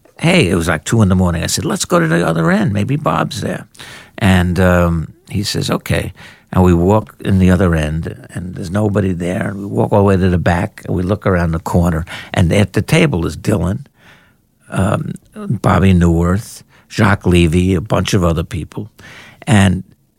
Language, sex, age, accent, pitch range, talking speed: English, male, 60-79, American, 95-140 Hz, 200 wpm